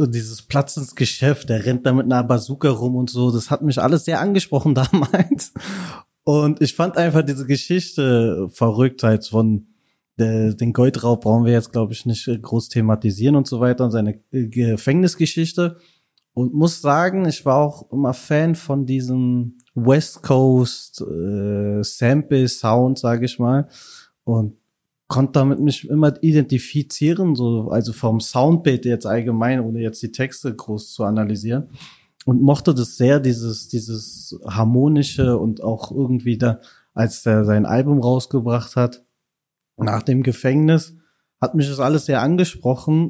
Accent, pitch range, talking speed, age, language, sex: German, 115-145 Hz, 155 wpm, 30-49, German, male